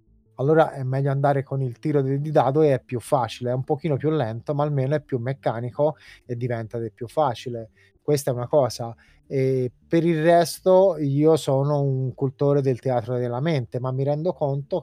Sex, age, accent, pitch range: male, 20-39, native, 125-155 Hz